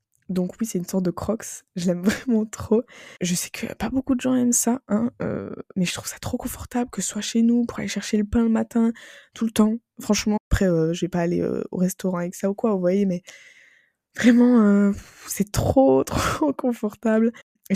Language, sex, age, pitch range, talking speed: French, female, 20-39, 185-215 Hz, 225 wpm